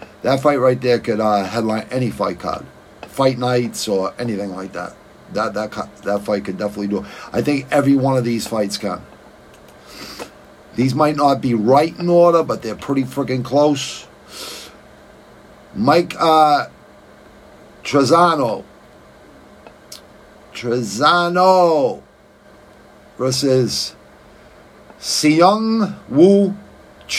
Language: English